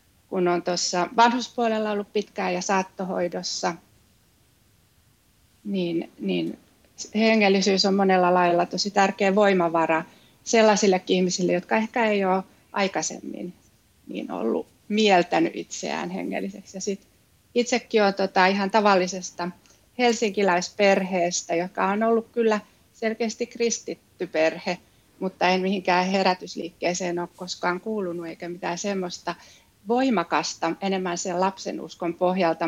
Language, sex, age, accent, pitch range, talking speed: Finnish, female, 30-49, native, 170-205 Hz, 110 wpm